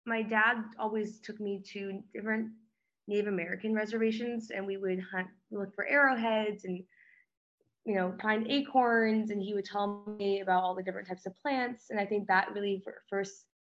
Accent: American